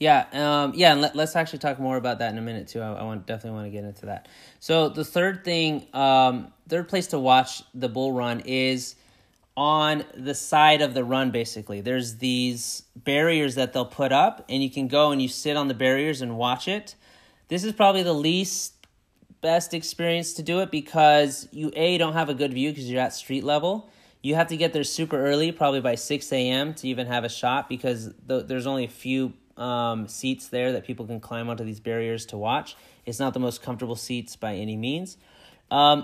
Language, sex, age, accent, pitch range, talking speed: English, male, 30-49, American, 120-150 Hz, 220 wpm